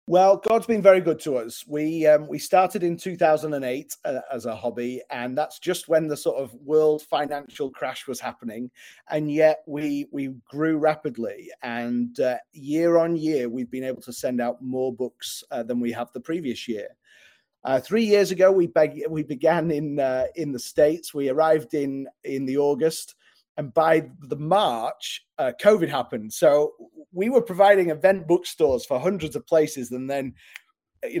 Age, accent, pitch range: 30-49, British, 130-175 Hz